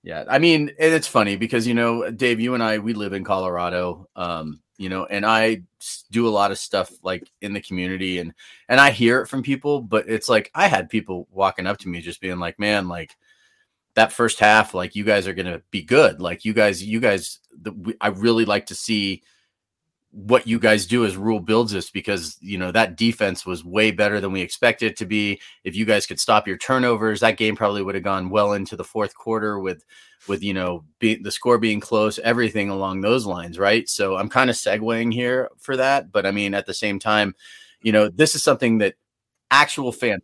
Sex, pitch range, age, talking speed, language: male, 95-115 Hz, 30-49, 225 wpm, English